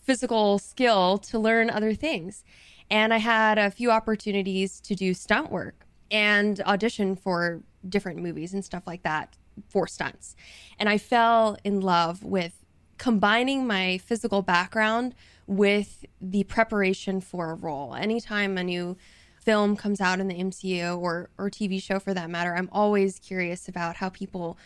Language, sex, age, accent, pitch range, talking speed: English, female, 20-39, American, 185-220 Hz, 160 wpm